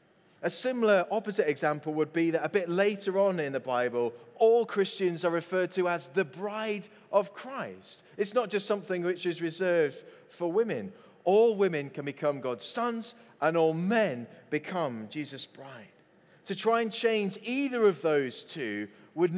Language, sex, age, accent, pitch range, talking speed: English, male, 30-49, British, 155-205 Hz, 165 wpm